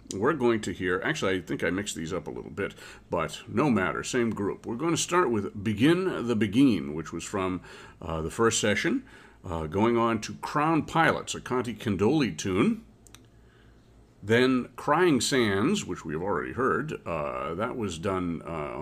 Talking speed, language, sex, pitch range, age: 180 wpm, English, male, 100-135 Hz, 40-59